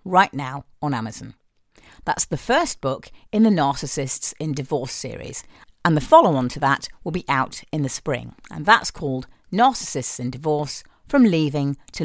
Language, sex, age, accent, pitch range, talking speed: English, female, 50-69, British, 140-185 Hz, 170 wpm